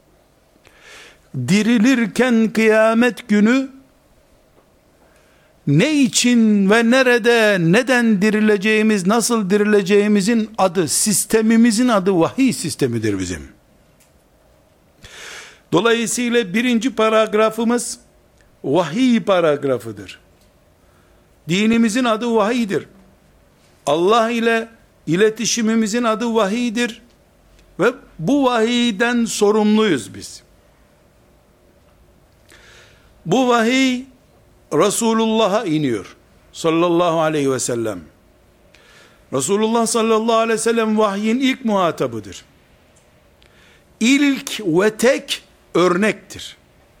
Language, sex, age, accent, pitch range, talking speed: Turkish, male, 60-79, native, 185-235 Hz, 70 wpm